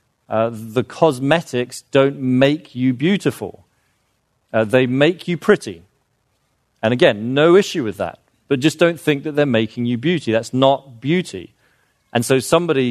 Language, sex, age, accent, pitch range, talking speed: English, male, 40-59, British, 110-140 Hz, 155 wpm